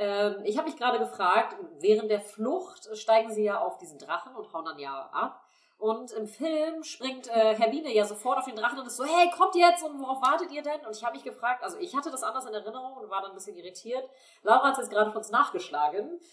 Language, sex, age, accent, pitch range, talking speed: German, female, 30-49, German, 205-260 Hz, 245 wpm